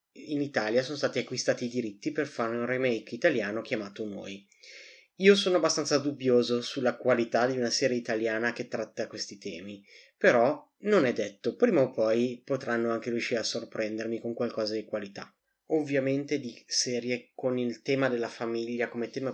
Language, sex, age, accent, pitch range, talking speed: Italian, male, 30-49, native, 115-135 Hz, 170 wpm